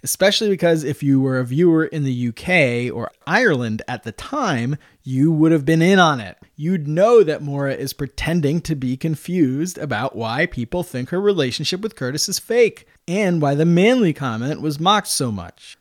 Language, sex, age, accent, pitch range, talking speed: English, male, 20-39, American, 130-170 Hz, 190 wpm